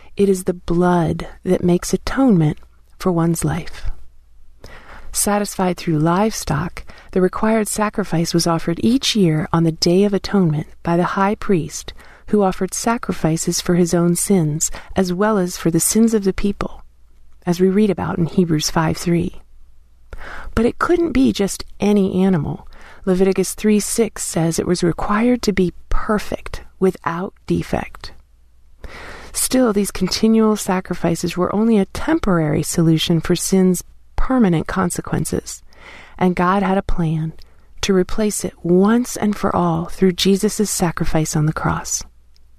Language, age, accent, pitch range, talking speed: English, 40-59, American, 165-205 Hz, 140 wpm